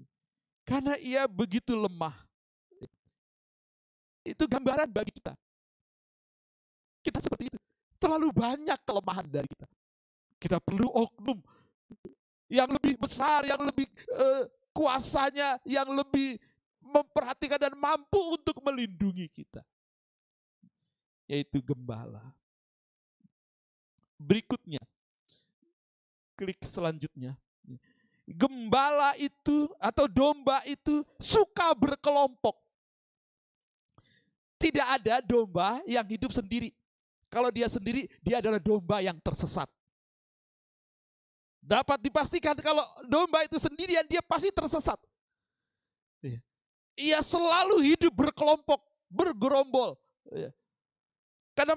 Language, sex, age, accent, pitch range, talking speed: Indonesian, male, 50-69, native, 205-305 Hz, 85 wpm